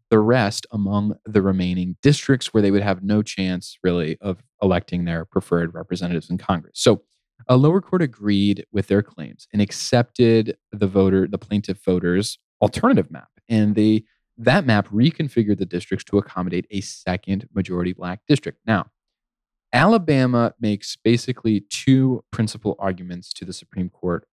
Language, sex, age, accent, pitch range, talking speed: English, male, 20-39, American, 95-125 Hz, 155 wpm